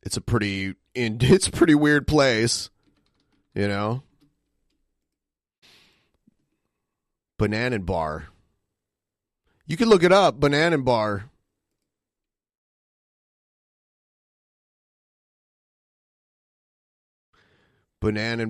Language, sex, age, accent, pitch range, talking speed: English, male, 30-49, American, 110-145 Hz, 70 wpm